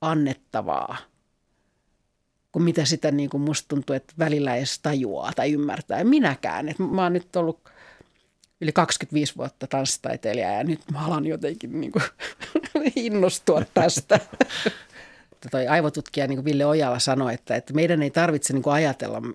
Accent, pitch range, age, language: native, 145-175 Hz, 40-59, Finnish